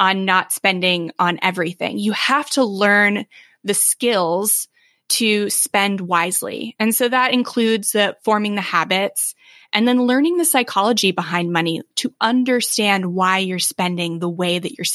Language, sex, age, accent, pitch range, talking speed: English, female, 20-39, American, 190-245 Hz, 150 wpm